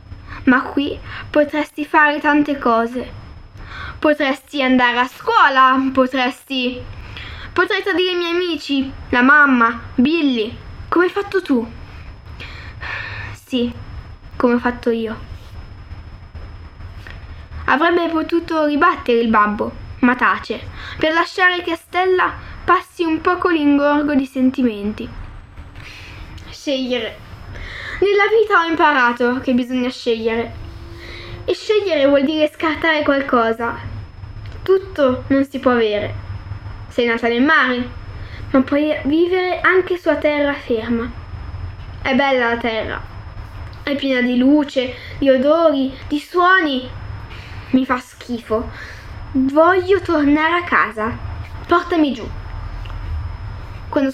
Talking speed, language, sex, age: 110 wpm, Italian, female, 10-29